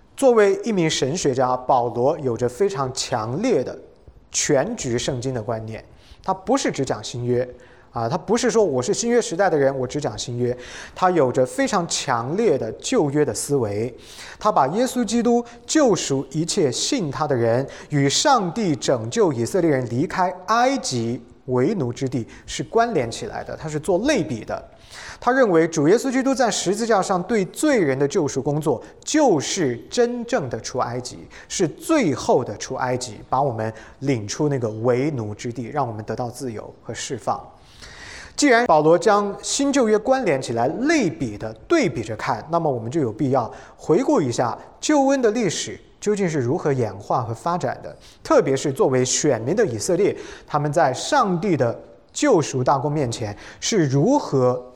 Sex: male